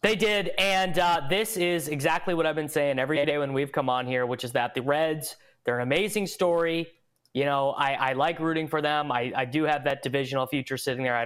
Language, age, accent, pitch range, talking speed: English, 20-39, American, 130-165 Hz, 235 wpm